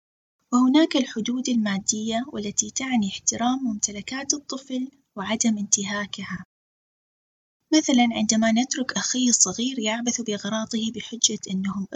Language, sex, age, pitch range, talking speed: Arabic, female, 20-39, 210-260 Hz, 95 wpm